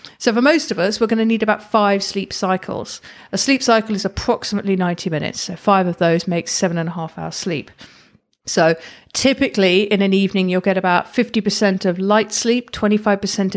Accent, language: British, English